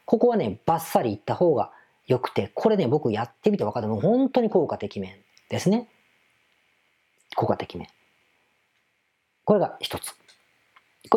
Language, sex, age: Japanese, female, 40-59